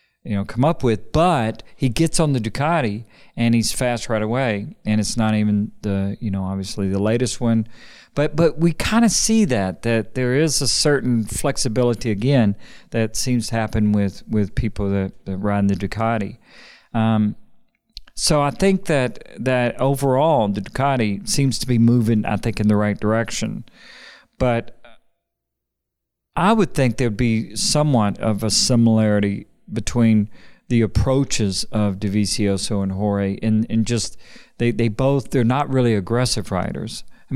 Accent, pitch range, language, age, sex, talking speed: American, 105-125 Hz, English, 40-59, male, 160 wpm